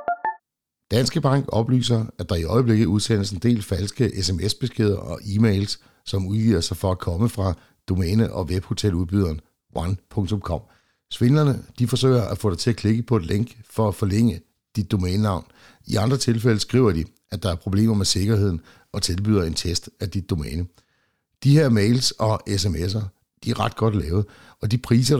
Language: Danish